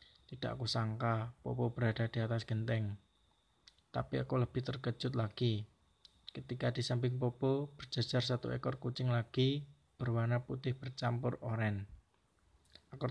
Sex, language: male, Indonesian